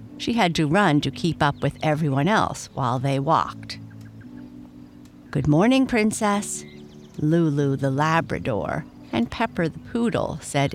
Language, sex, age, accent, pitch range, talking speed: English, female, 50-69, American, 125-180 Hz, 135 wpm